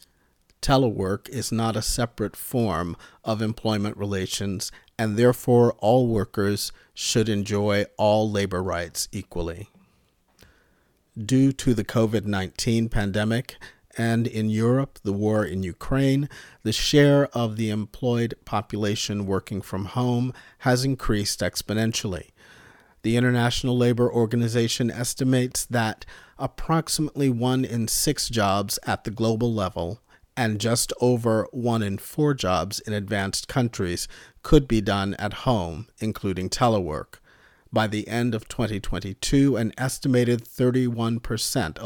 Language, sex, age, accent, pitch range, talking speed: English, male, 50-69, American, 105-120 Hz, 120 wpm